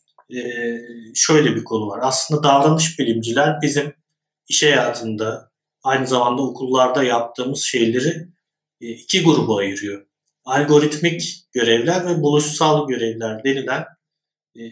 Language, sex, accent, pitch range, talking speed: Turkish, male, native, 125-150 Hz, 110 wpm